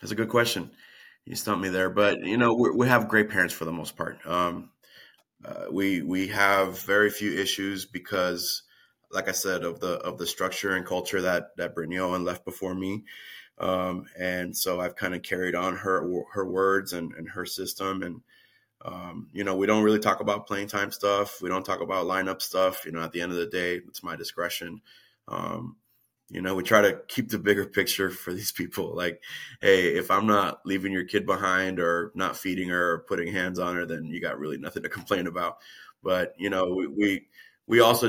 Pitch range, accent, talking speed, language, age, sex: 90-105 Hz, American, 215 wpm, English, 20-39, male